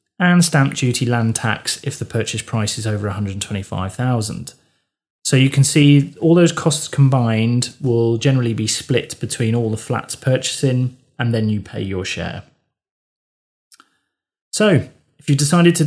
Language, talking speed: English, 150 wpm